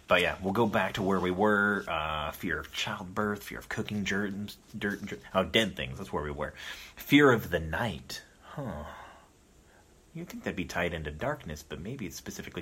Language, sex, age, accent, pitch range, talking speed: English, male, 30-49, American, 75-110 Hz, 200 wpm